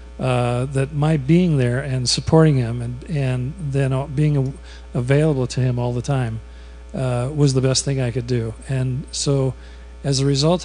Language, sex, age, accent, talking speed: English, male, 40-59, American, 175 wpm